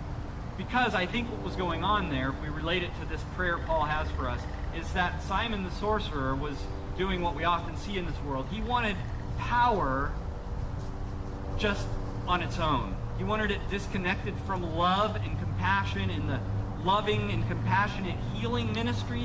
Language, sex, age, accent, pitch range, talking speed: English, male, 40-59, American, 90-105 Hz, 170 wpm